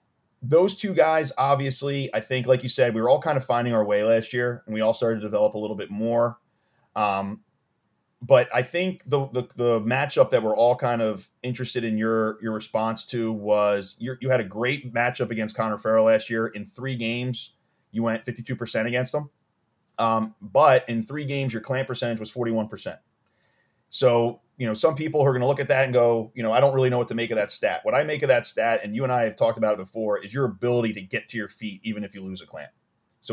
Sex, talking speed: male, 240 wpm